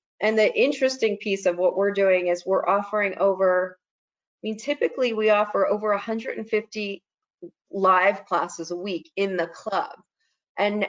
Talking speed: 150 wpm